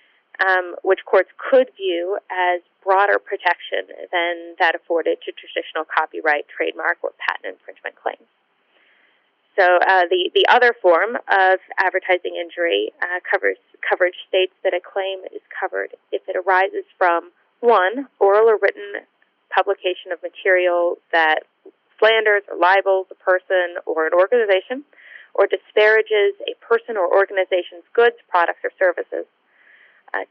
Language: English